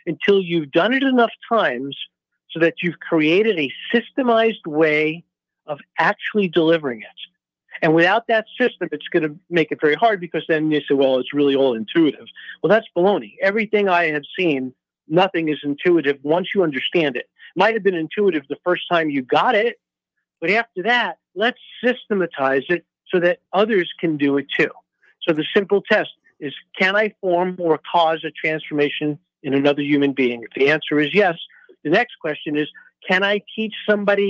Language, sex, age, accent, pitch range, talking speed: English, male, 50-69, American, 150-205 Hz, 180 wpm